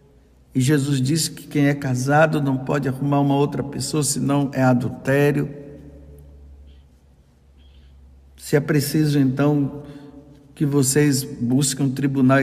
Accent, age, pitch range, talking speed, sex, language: Brazilian, 60-79, 130-155 Hz, 120 wpm, male, Portuguese